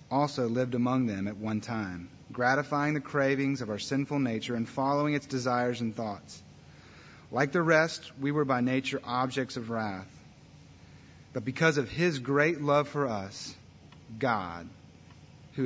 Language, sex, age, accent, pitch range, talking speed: English, male, 30-49, American, 120-145 Hz, 155 wpm